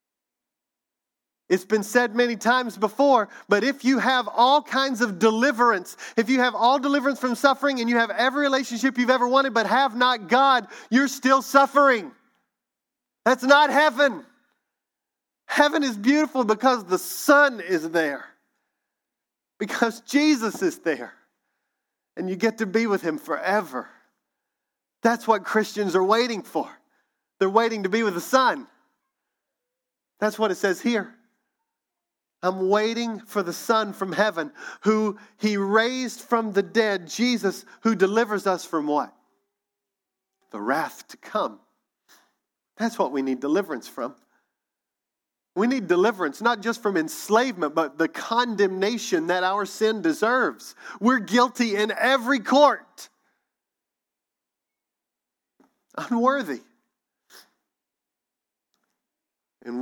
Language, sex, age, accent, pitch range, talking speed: English, male, 40-59, American, 205-265 Hz, 125 wpm